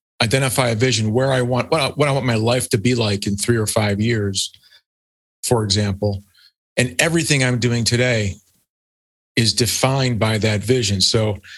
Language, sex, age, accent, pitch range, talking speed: English, male, 30-49, American, 105-130 Hz, 175 wpm